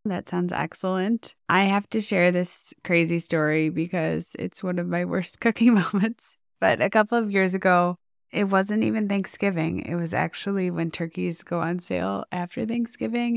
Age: 20-39